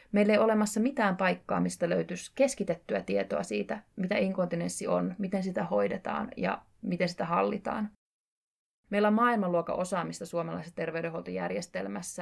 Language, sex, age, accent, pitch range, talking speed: Finnish, female, 20-39, native, 170-200 Hz, 130 wpm